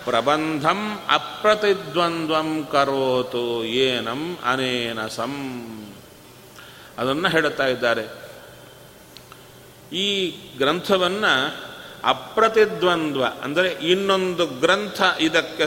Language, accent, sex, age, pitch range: Kannada, native, male, 40-59, 135-180 Hz